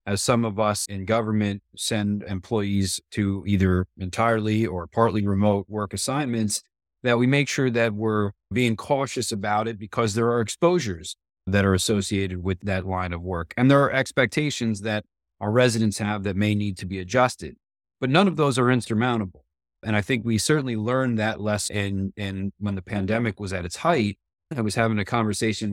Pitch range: 95-115 Hz